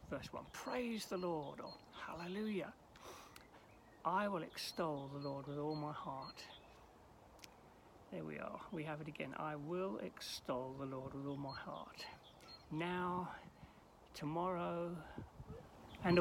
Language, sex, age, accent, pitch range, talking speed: English, male, 60-79, British, 150-220 Hz, 130 wpm